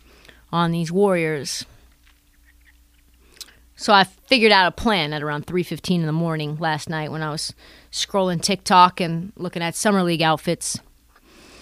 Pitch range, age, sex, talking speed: 150-225 Hz, 30-49, female, 150 wpm